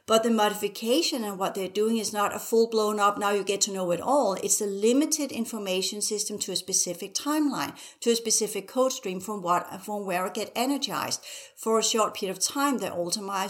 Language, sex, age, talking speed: English, female, 60-79, 220 wpm